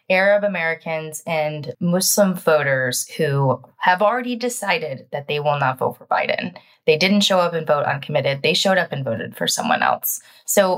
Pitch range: 150-205 Hz